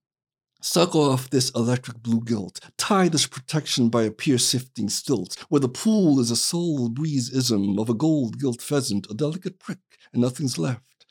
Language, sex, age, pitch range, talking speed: English, male, 60-79, 130-195 Hz, 155 wpm